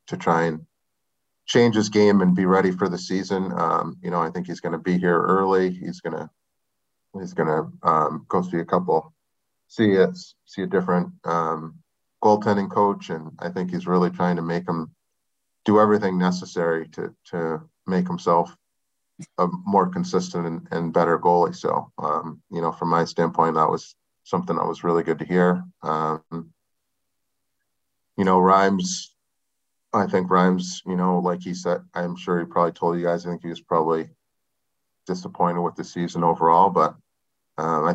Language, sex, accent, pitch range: English, male, American, 85-95 Hz